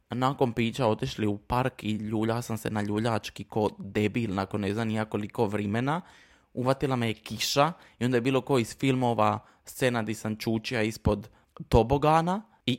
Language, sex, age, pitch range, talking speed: Croatian, male, 20-39, 105-130 Hz, 160 wpm